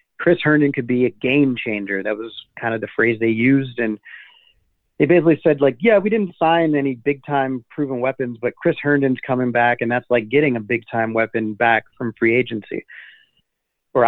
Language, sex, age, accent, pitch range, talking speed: English, male, 30-49, American, 120-145 Hz, 200 wpm